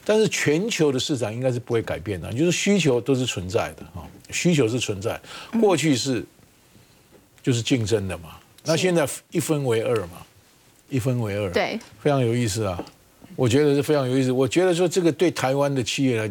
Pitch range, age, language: 115-160 Hz, 50-69, Chinese